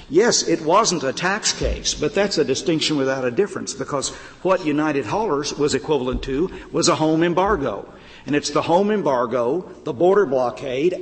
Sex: male